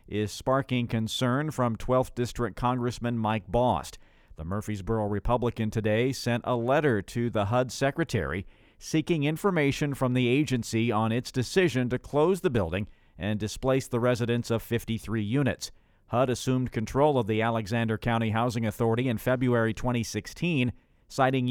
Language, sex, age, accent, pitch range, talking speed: English, male, 50-69, American, 105-125 Hz, 145 wpm